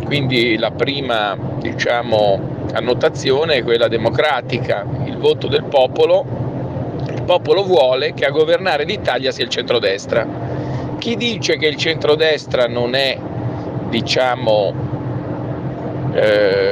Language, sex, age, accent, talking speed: Italian, male, 50-69, native, 110 wpm